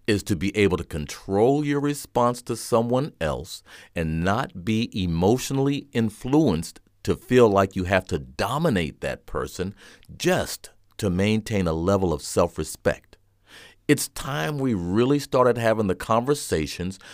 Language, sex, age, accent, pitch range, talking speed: English, male, 50-69, American, 90-125 Hz, 140 wpm